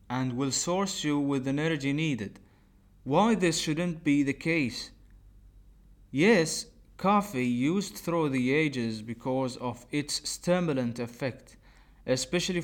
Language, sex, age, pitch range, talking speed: English, male, 30-49, 115-150 Hz, 125 wpm